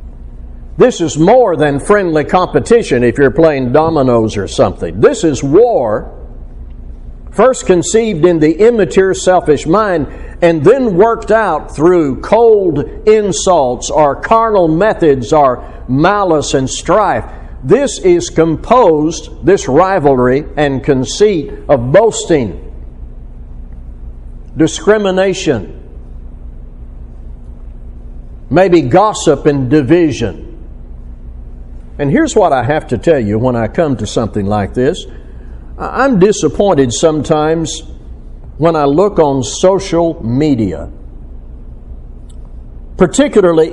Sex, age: male, 60-79